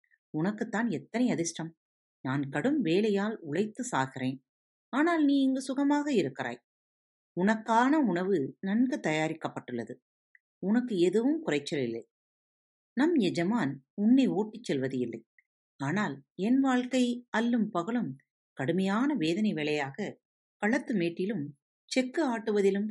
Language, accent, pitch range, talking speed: Tamil, native, 165-245 Hz, 100 wpm